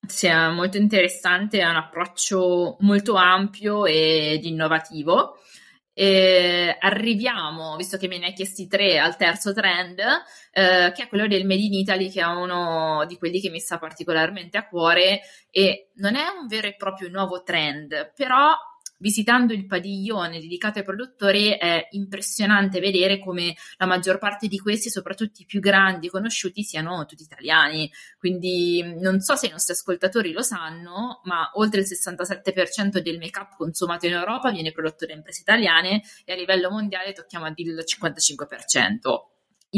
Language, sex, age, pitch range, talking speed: Italian, female, 20-39, 175-205 Hz, 160 wpm